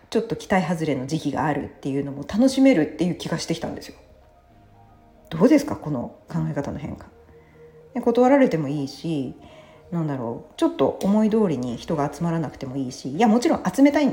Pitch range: 135-210 Hz